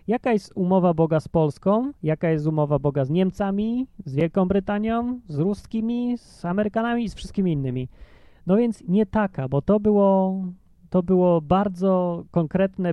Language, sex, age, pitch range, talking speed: Polish, male, 30-49, 145-200 Hz, 155 wpm